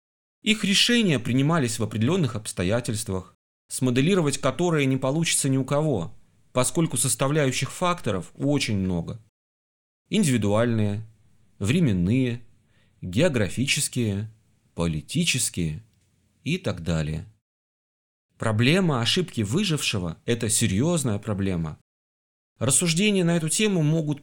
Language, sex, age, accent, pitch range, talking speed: Russian, male, 30-49, native, 110-155 Hz, 90 wpm